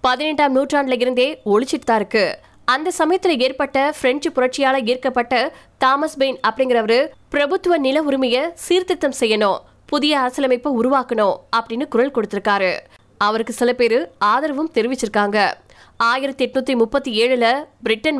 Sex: female